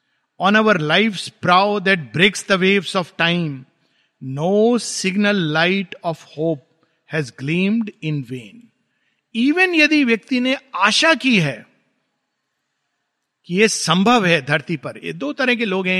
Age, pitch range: 50-69, 165-225 Hz